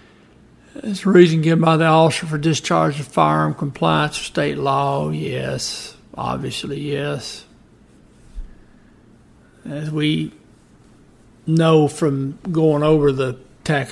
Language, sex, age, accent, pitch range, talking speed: English, male, 60-79, American, 125-165 Hz, 110 wpm